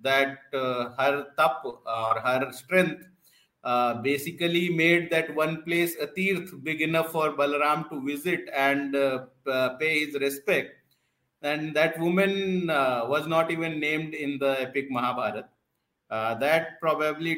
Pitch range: 125-160 Hz